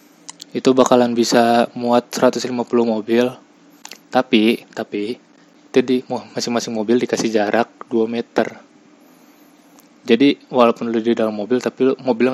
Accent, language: native, Indonesian